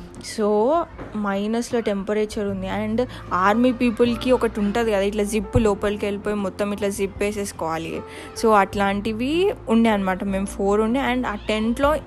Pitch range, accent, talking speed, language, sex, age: 200-225 Hz, native, 140 wpm, Telugu, female, 20-39